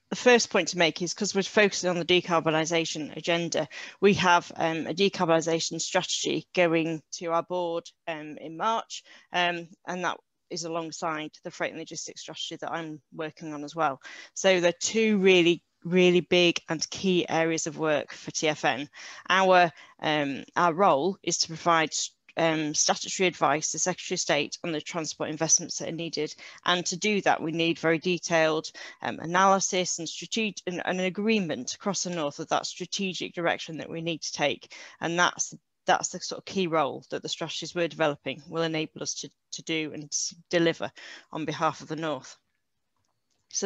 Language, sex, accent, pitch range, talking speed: English, female, British, 160-185 Hz, 185 wpm